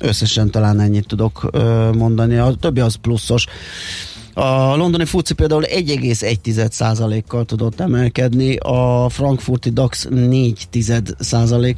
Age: 30-49